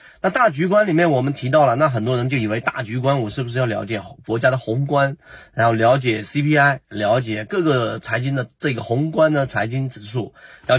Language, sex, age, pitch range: Chinese, male, 30-49, 110-155 Hz